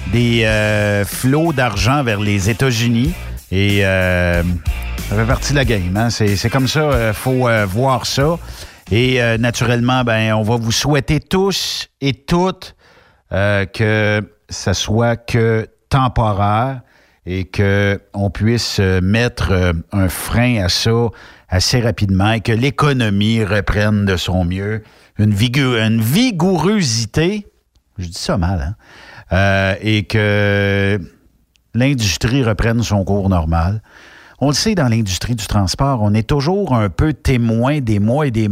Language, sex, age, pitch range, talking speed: French, male, 50-69, 100-130 Hz, 150 wpm